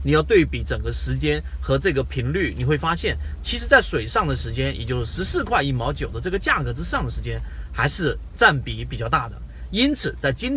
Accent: native